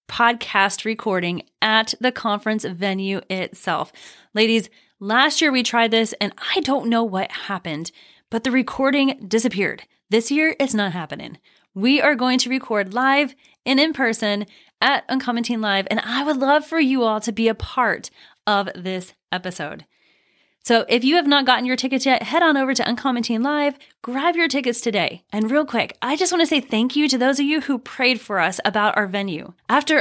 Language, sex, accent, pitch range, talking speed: English, female, American, 205-265 Hz, 190 wpm